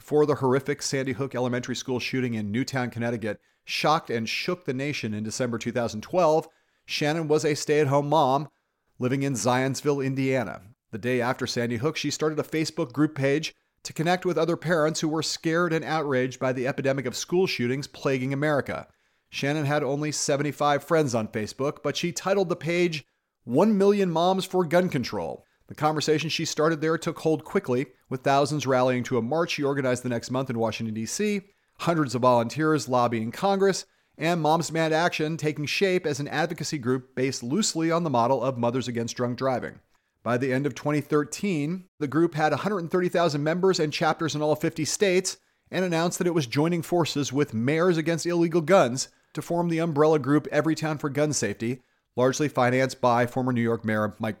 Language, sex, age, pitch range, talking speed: English, male, 40-59, 125-160 Hz, 185 wpm